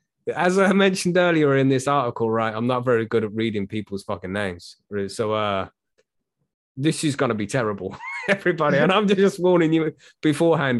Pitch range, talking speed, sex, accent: 125-155 Hz, 180 wpm, male, British